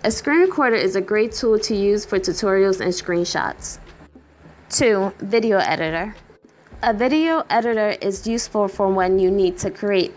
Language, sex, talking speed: English, female, 160 wpm